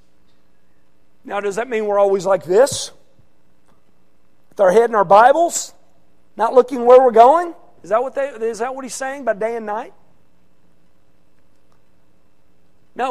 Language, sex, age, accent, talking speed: English, male, 40-59, American, 135 wpm